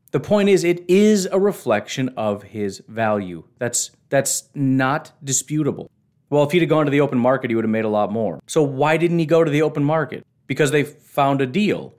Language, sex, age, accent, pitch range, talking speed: English, male, 30-49, American, 120-175 Hz, 220 wpm